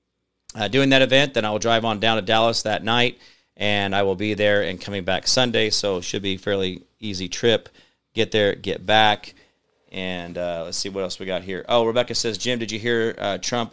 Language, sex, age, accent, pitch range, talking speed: English, male, 40-59, American, 95-120 Hz, 230 wpm